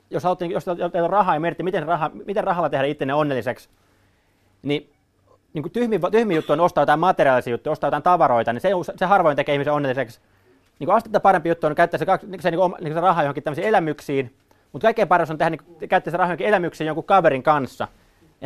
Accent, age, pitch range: native, 30-49, 130-180 Hz